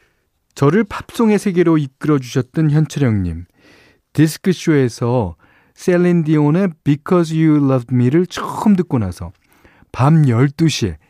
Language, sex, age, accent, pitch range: Korean, male, 40-59, native, 100-155 Hz